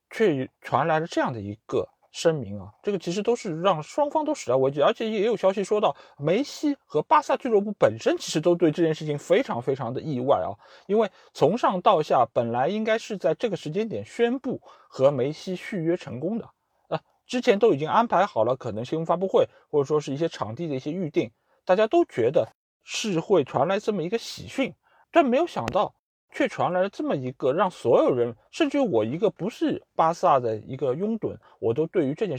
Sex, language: male, Chinese